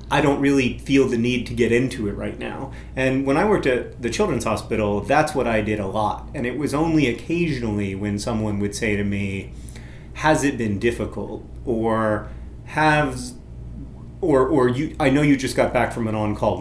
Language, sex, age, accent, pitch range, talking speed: English, male, 30-49, American, 105-130 Hz, 195 wpm